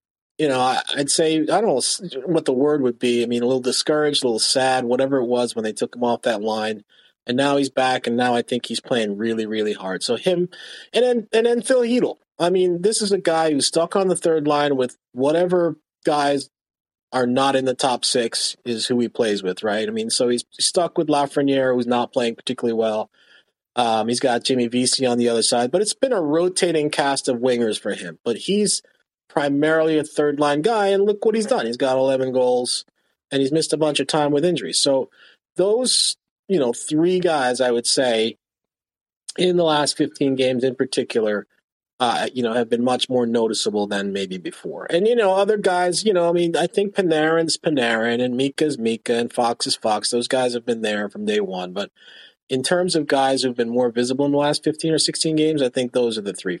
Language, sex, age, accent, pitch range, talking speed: English, male, 30-49, American, 120-165 Hz, 220 wpm